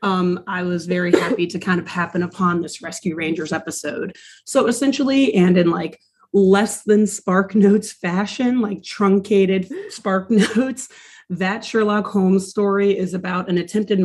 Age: 30-49